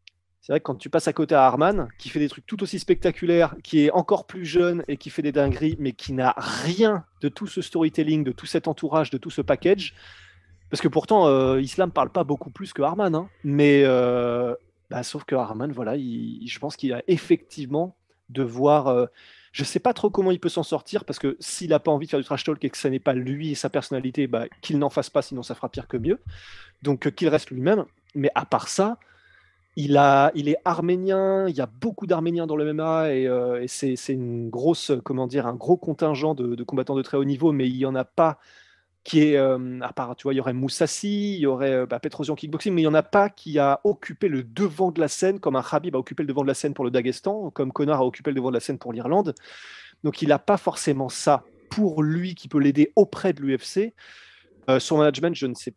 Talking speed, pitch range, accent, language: 250 wpm, 130-170 Hz, French, French